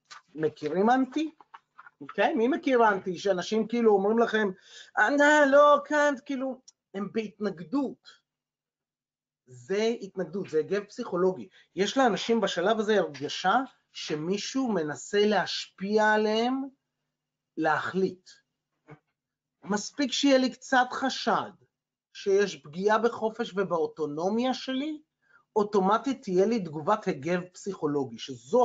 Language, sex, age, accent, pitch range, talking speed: Hebrew, male, 30-49, native, 185-260 Hz, 105 wpm